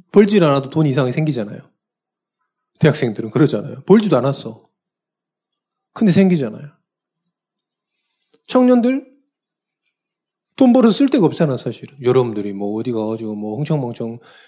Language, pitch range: Korean, 130-215 Hz